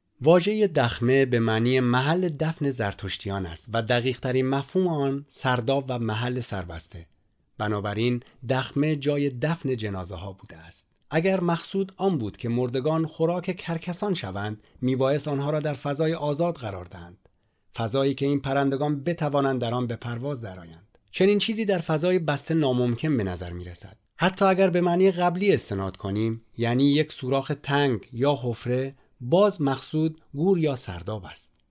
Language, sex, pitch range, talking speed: English, male, 110-155 Hz, 150 wpm